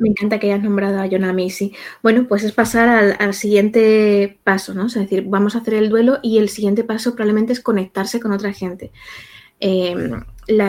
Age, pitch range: 20-39, 195-230 Hz